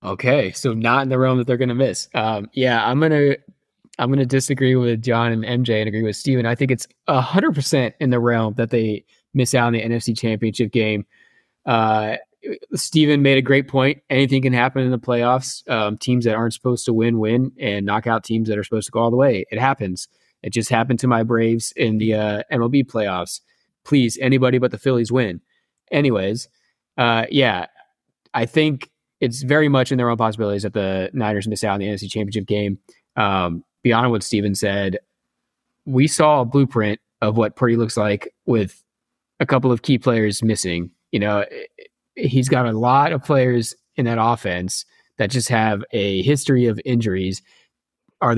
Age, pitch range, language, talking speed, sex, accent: 20-39, 110-130 Hz, English, 190 wpm, male, American